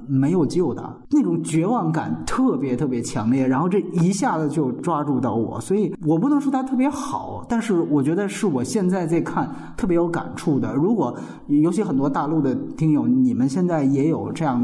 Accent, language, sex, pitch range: native, Chinese, male, 140-190 Hz